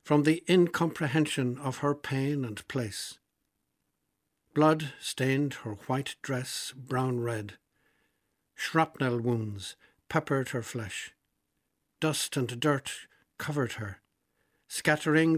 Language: English